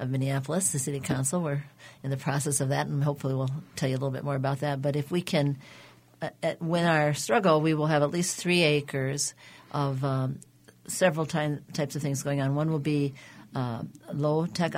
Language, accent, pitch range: English, American, 140-170 Hz